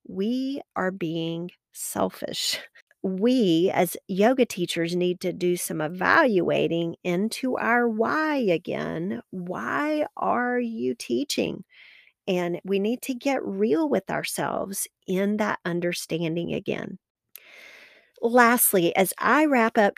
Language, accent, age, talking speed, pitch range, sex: English, American, 40-59, 115 wpm, 175-225 Hz, female